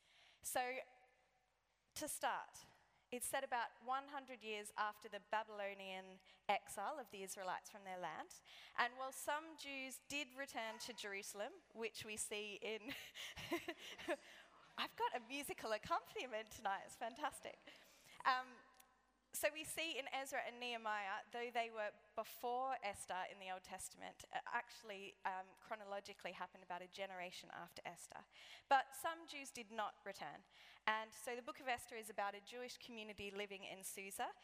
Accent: Australian